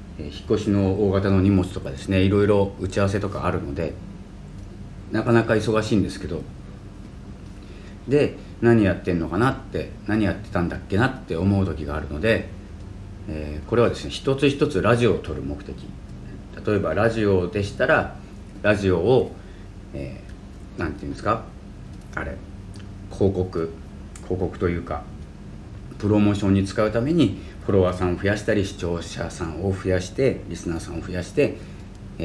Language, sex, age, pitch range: Japanese, male, 40-59, 90-105 Hz